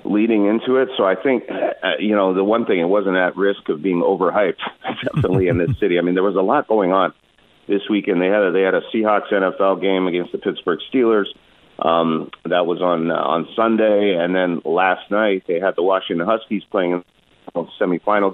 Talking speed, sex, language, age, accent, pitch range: 210 wpm, male, English, 40-59, American, 95-110 Hz